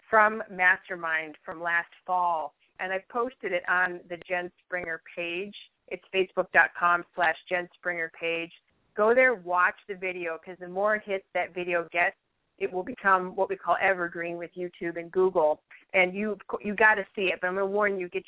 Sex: female